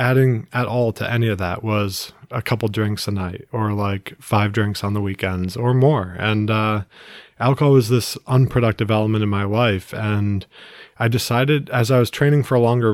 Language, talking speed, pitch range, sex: English, 195 wpm, 105-125 Hz, male